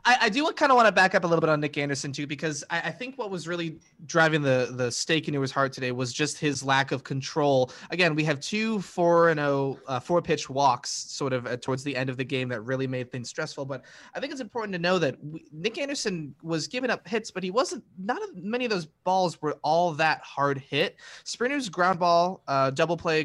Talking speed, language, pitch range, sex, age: 245 wpm, English, 140-180 Hz, male, 20-39